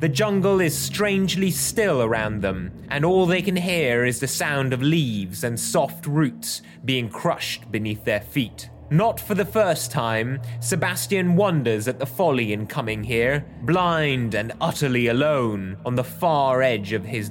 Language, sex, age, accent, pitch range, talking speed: English, male, 30-49, British, 115-165 Hz, 165 wpm